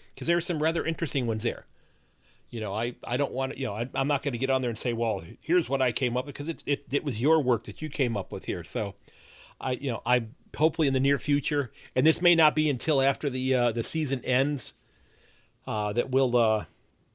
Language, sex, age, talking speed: English, male, 40-59, 250 wpm